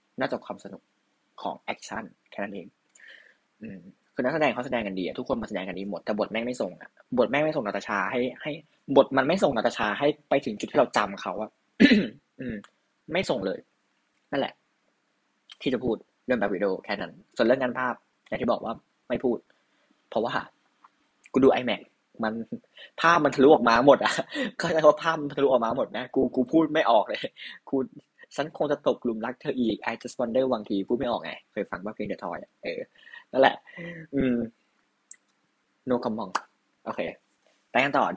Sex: male